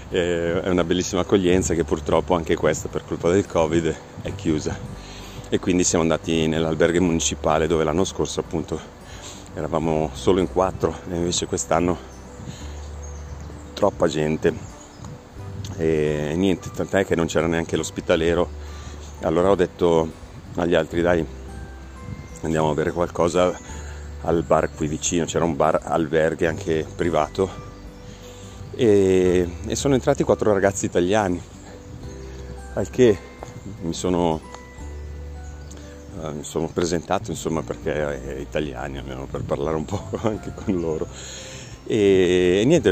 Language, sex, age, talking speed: Italian, male, 30-49, 125 wpm